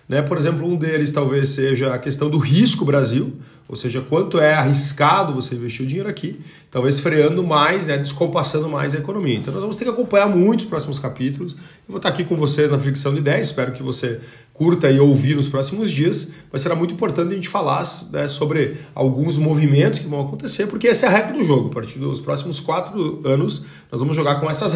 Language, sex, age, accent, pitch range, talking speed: Portuguese, male, 40-59, Brazilian, 135-180 Hz, 220 wpm